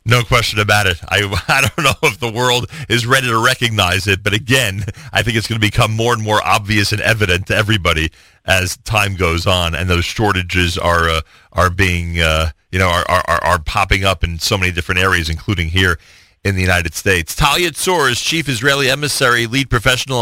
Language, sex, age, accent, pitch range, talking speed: English, male, 40-59, American, 95-120 Hz, 210 wpm